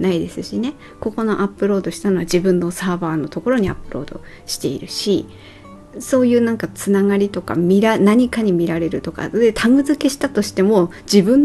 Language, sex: Japanese, female